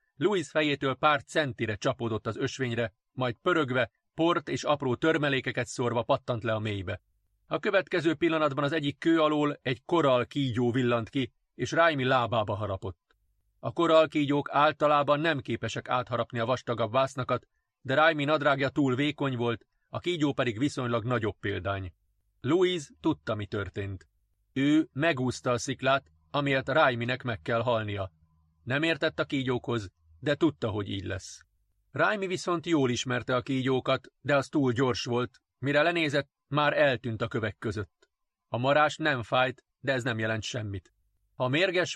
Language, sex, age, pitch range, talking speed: Hungarian, male, 30-49, 115-145 Hz, 155 wpm